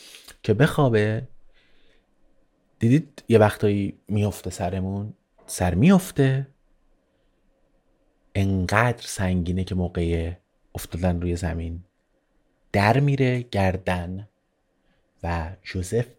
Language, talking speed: Persian, 80 wpm